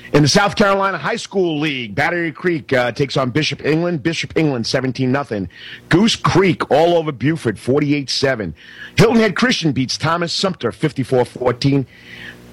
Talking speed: 145 wpm